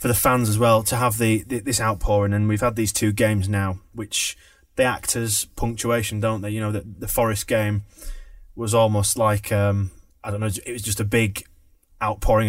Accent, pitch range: British, 100-110 Hz